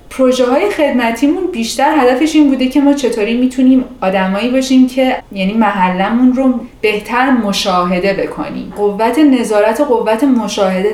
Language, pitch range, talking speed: Persian, 195-255 Hz, 135 wpm